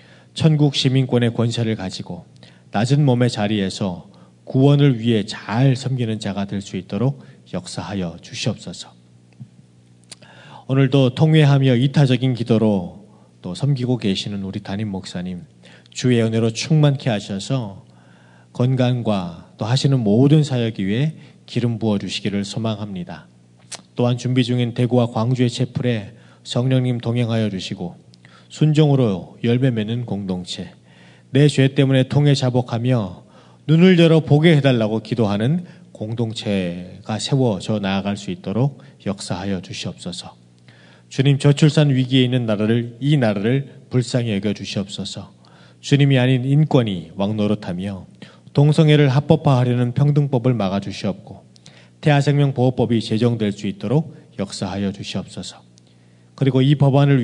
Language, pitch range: Korean, 95-135 Hz